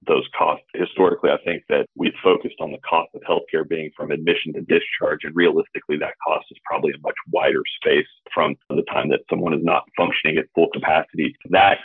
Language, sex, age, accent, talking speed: English, male, 30-49, American, 205 wpm